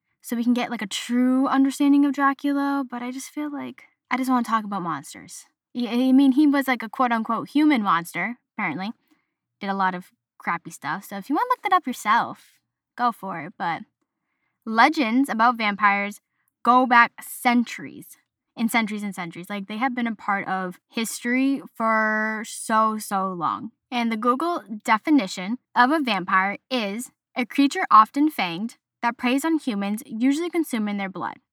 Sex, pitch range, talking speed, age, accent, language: female, 210-260 Hz, 180 wpm, 10-29, American, English